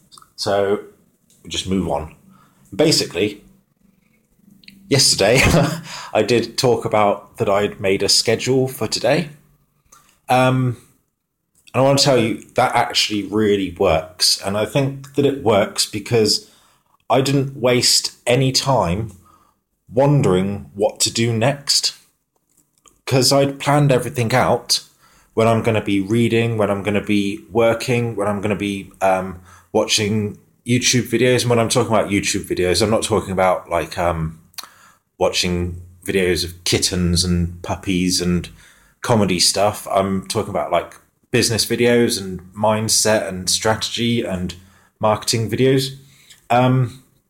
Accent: British